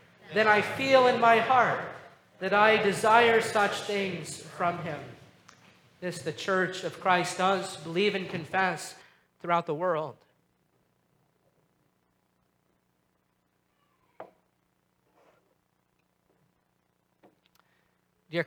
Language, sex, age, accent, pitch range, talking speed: English, male, 40-59, American, 155-205 Hz, 85 wpm